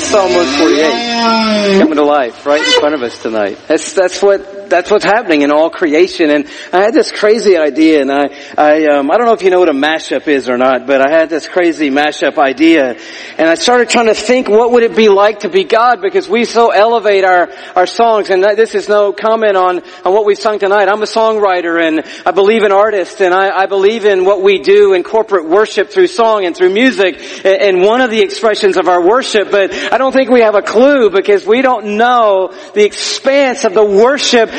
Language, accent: English, American